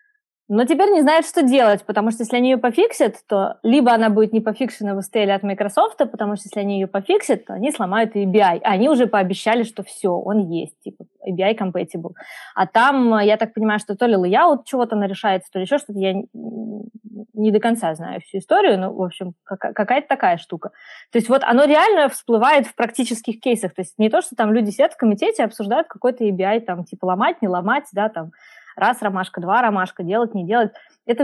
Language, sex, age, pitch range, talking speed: Russian, female, 20-39, 195-235 Hz, 215 wpm